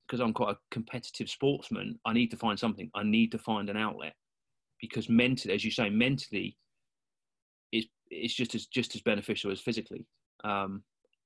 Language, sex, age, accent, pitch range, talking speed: English, male, 30-49, British, 105-120 Hz, 175 wpm